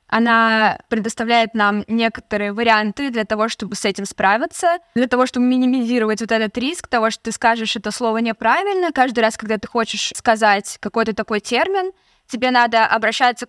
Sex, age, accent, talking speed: female, 20-39, native, 165 wpm